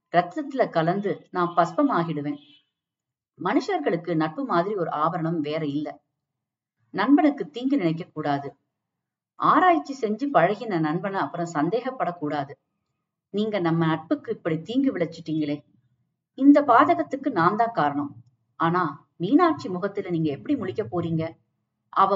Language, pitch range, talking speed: Tamil, 150-215 Hz, 95 wpm